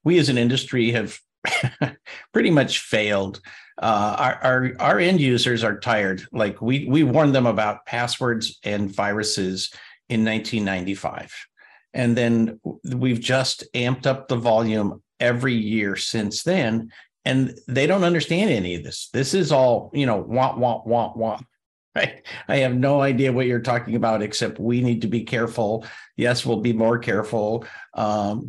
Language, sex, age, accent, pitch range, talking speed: English, male, 50-69, American, 110-130 Hz, 160 wpm